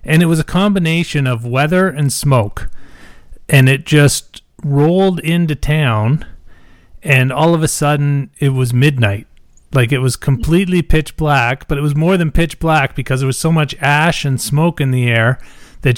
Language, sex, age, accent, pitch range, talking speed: English, male, 30-49, American, 125-155 Hz, 180 wpm